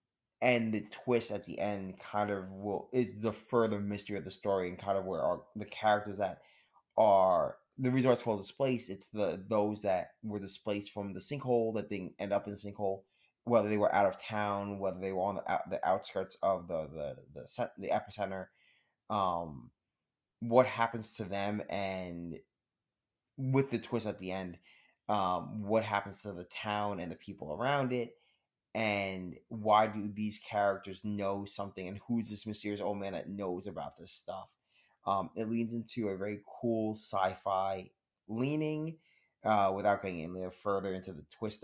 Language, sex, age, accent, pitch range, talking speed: English, male, 20-39, American, 95-115 Hz, 180 wpm